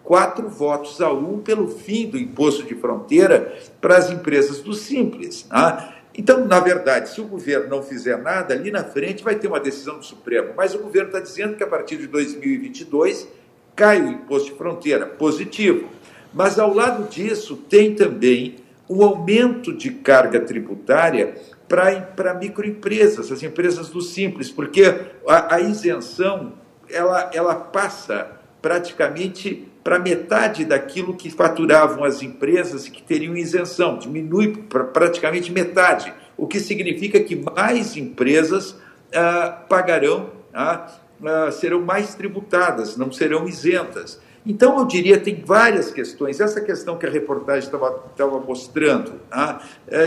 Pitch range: 155-210 Hz